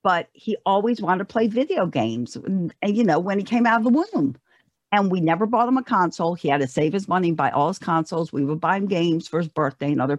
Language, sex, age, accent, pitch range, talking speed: English, female, 50-69, American, 170-235 Hz, 265 wpm